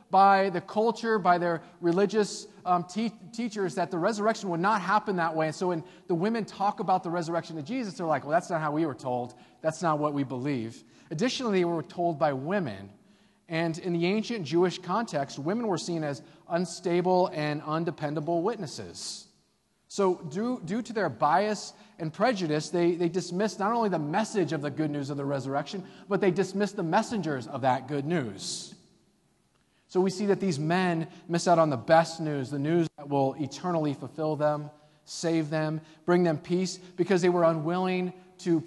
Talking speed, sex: 190 wpm, male